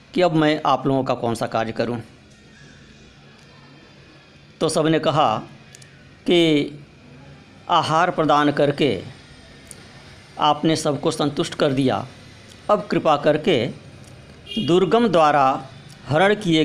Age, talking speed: 50-69, 105 wpm